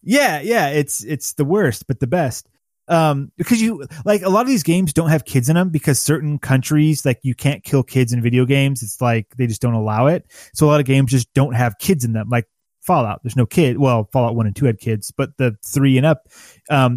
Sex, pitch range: male, 125-155 Hz